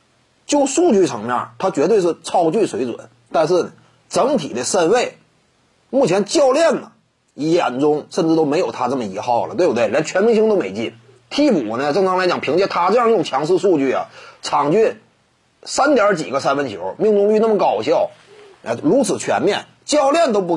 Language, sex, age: Chinese, male, 30-49